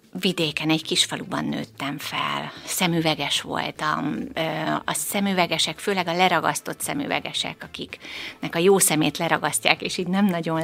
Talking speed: 130 wpm